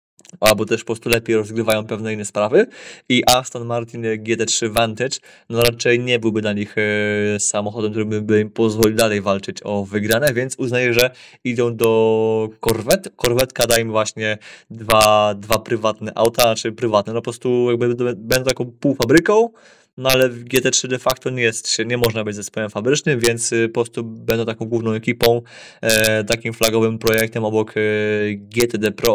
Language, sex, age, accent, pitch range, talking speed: Polish, male, 20-39, native, 110-120 Hz, 165 wpm